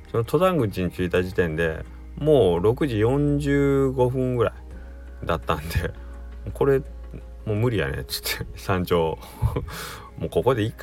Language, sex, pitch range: Japanese, male, 80-115 Hz